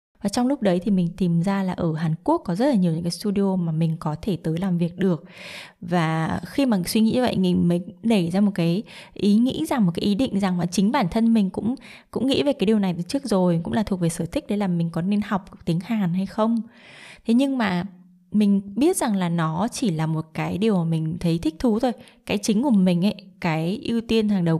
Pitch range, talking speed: 175-215 Hz, 265 wpm